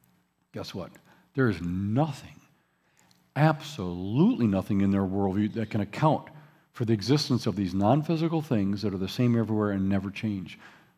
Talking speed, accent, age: 155 wpm, American, 50-69